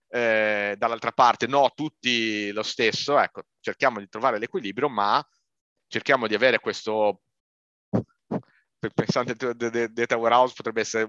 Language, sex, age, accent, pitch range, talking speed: Italian, male, 30-49, native, 105-125 Hz, 120 wpm